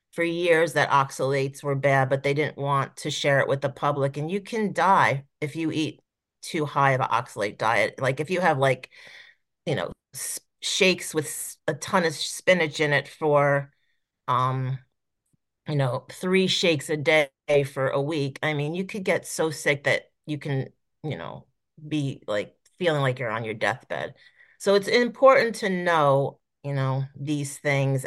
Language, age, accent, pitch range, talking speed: English, 40-59, American, 140-170 Hz, 180 wpm